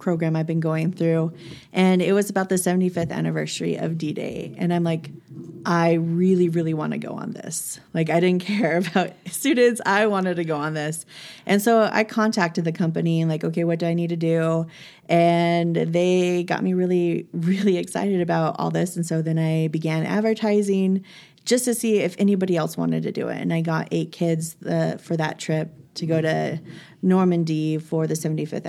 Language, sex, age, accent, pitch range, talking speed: English, female, 30-49, American, 160-190 Hz, 195 wpm